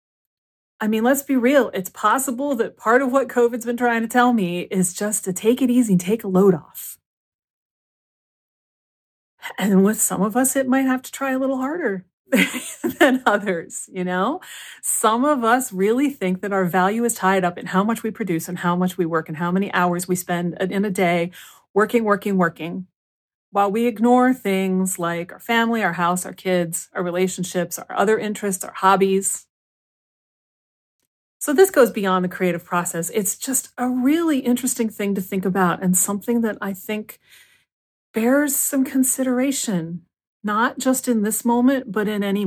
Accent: American